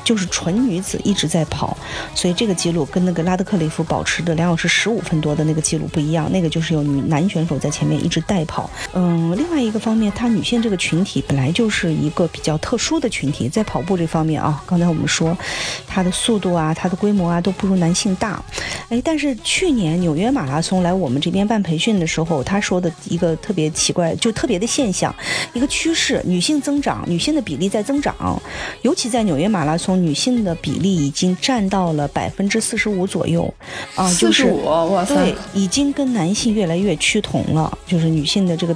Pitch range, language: 165-220 Hz, Chinese